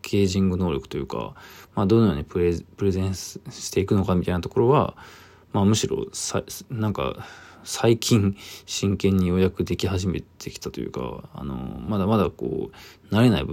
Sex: male